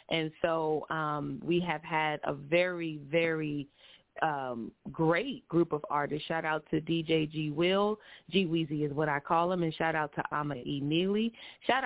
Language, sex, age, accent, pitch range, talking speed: English, female, 30-49, American, 155-175 Hz, 175 wpm